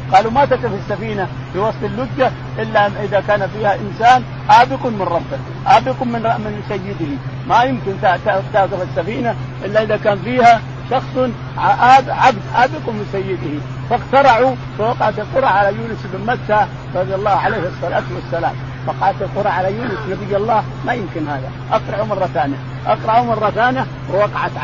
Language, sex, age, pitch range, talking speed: Arabic, male, 50-69, 130-205 Hz, 150 wpm